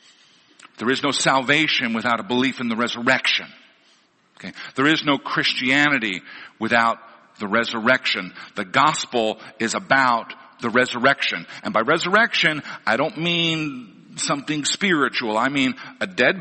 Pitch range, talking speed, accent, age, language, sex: 155-205 Hz, 130 wpm, American, 50-69, English, male